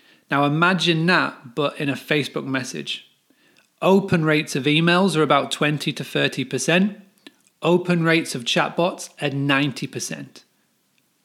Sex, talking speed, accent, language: male, 125 wpm, British, English